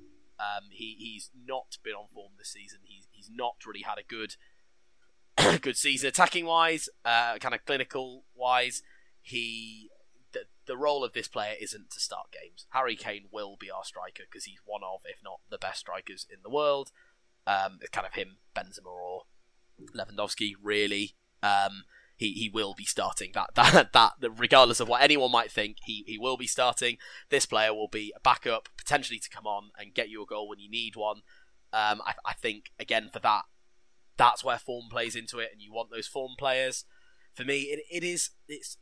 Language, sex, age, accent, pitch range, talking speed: English, male, 20-39, British, 105-135 Hz, 195 wpm